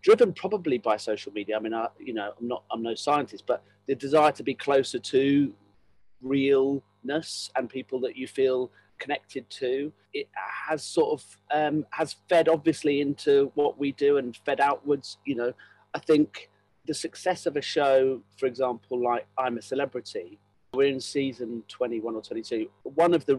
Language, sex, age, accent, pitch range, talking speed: English, male, 40-59, British, 120-150 Hz, 175 wpm